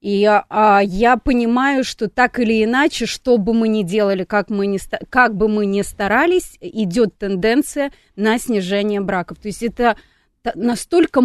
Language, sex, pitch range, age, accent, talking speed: Russian, female, 205-250 Hz, 30-49, native, 145 wpm